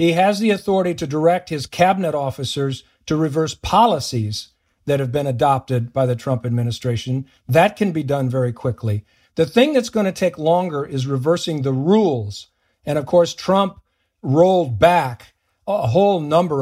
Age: 50-69